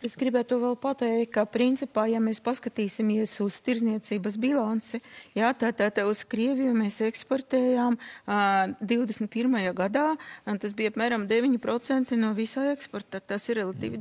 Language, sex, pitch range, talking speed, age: English, female, 200-245 Hz, 135 wpm, 40-59